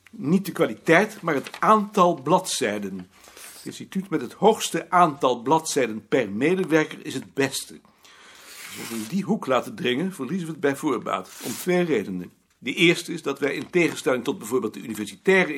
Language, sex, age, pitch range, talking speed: Dutch, male, 60-79, 150-195 Hz, 175 wpm